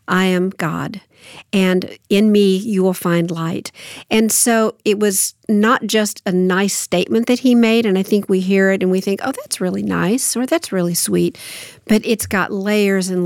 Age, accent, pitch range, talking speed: 50-69, American, 175-200 Hz, 200 wpm